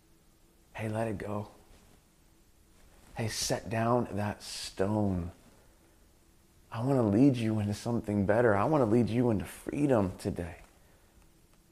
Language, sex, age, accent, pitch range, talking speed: English, male, 30-49, American, 85-115 Hz, 130 wpm